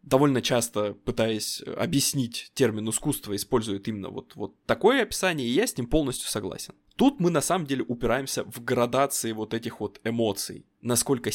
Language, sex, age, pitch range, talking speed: Russian, male, 20-39, 115-145 Hz, 165 wpm